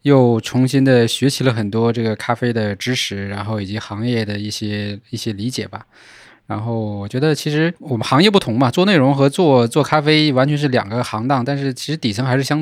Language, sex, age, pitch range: Chinese, male, 20-39, 110-130 Hz